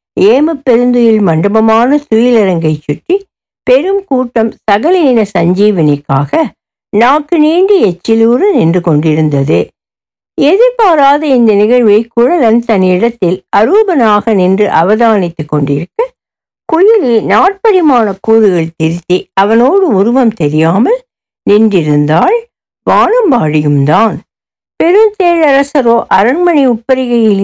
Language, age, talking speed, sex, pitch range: Tamil, 60-79, 80 wpm, female, 195-295 Hz